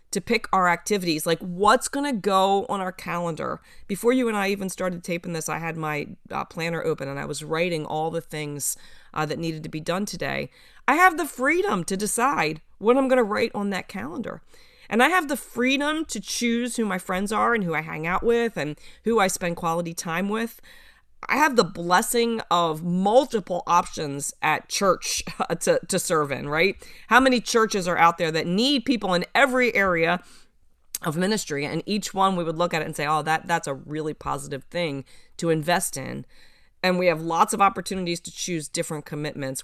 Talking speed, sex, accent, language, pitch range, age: 205 wpm, female, American, English, 165-230 Hz, 30-49